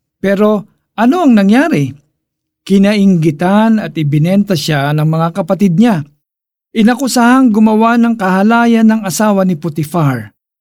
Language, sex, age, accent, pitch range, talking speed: Filipino, male, 50-69, native, 155-210 Hz, 115 wpm